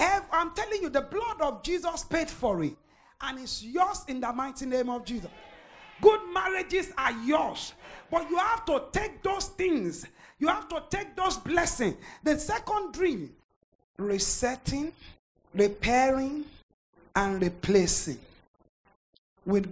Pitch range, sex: 205-295 Hz, male